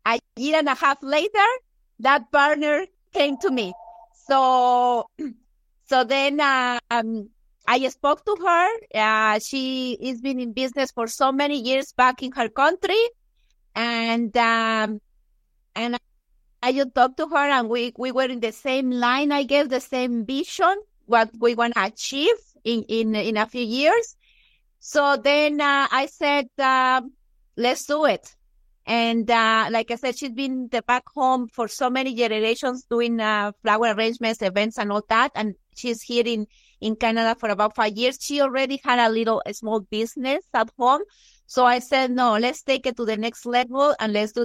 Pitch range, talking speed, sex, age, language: 230-275 Hz, 180 wpm, female, 30-49, English